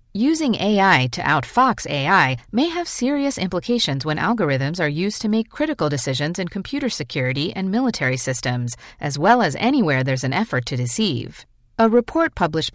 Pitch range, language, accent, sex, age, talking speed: 140-225 Hz, English, American, female, 40-59, 165 wpm